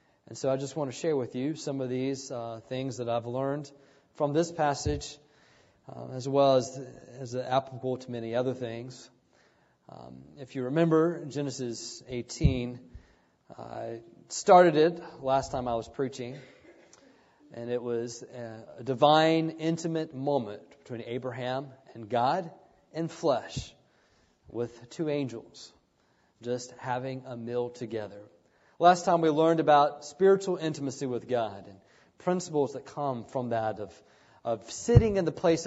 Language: English